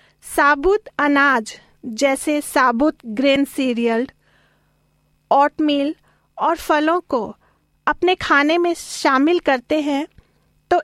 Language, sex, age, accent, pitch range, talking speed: Hindi, female, 40-59, native, 250-305 Hz, 95 wpm